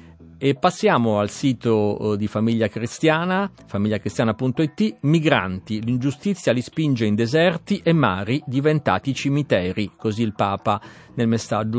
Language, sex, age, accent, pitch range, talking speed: Italian, male, 50-69, native, 100-130 Hz, 115 wpm